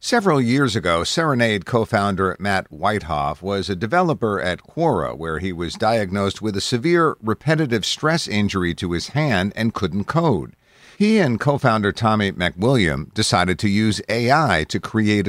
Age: 50-69